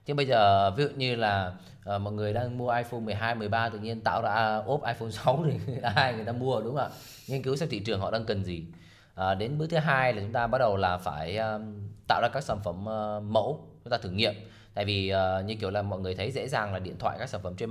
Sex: male